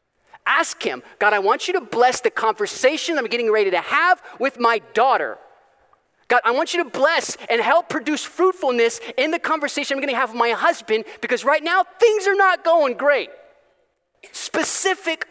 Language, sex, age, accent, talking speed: English, male, 30-49, American, 180 wpm